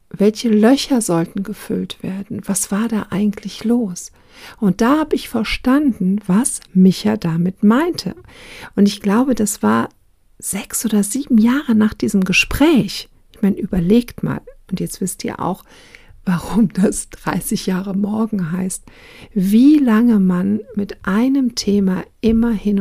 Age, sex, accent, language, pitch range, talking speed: 60-79, female, German, German, 185-225 Hz, 140 wpm